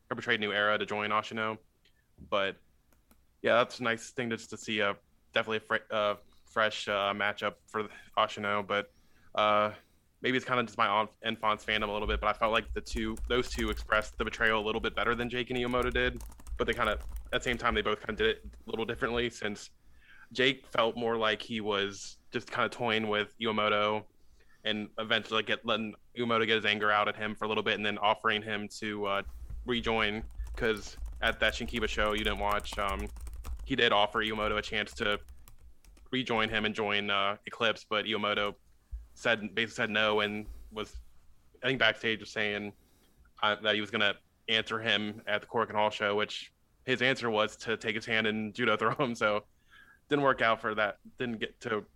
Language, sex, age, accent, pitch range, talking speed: English, male, 20-39, American, 105-115 Hz, 210 wpm